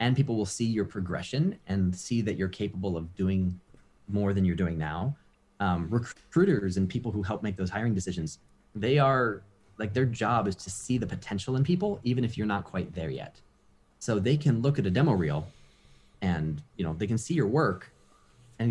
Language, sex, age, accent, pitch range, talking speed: English, male, 30-49, American, 95-140 Hz, 205 wpm